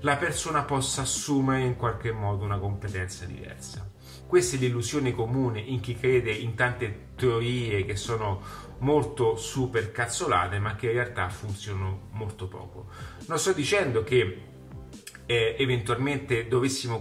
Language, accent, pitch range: Italian, native, 105-130 Hz